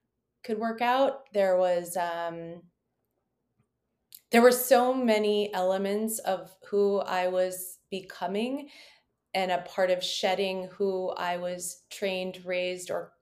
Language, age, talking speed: English, 20-39, 125 wpm